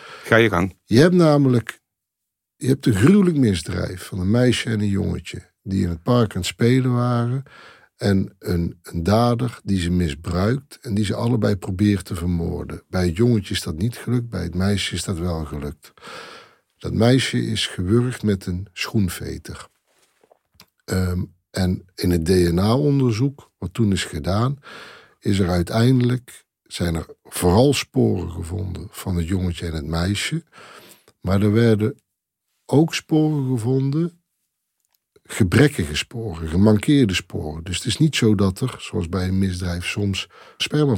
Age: 50-69